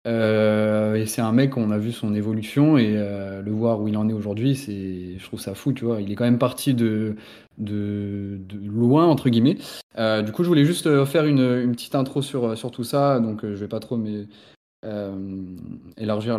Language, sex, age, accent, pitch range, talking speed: French, male, 20-39, French, 105-130 Hz, 220 wpm